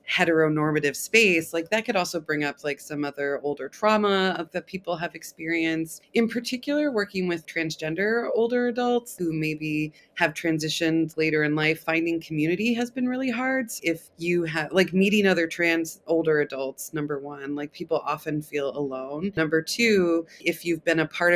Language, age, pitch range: English, 20-39, 150-195 Hz